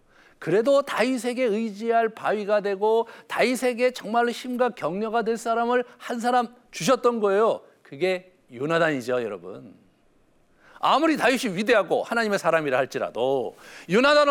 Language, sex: Korean, male